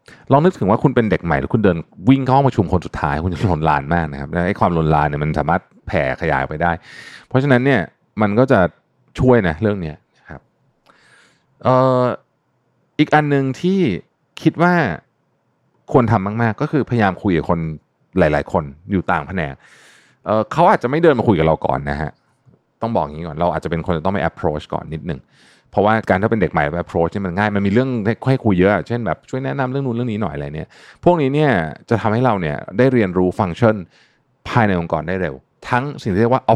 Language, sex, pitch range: Thai, male, 85-130 Hz